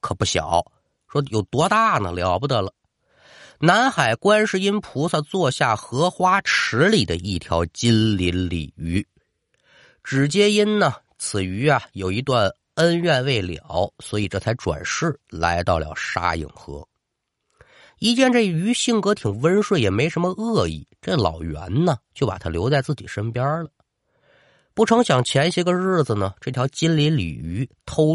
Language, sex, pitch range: Chinese, male, 90-150 Hz